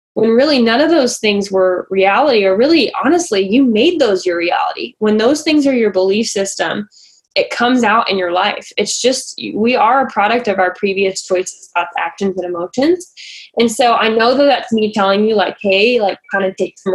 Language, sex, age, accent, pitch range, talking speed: English, female, 10-29, American, 195-250 Hz, 205 wpm